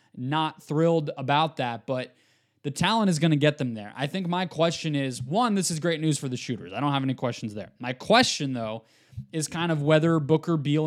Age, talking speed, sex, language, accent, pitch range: 20-39, 225 wpm, male, English, American, 130-165 Hz